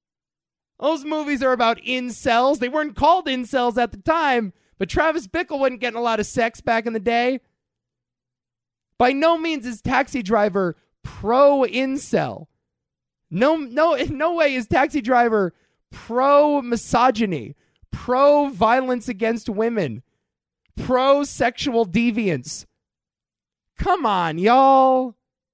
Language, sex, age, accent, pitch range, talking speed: English, male, 20-39, American, 160-255 Hz, 110 wpm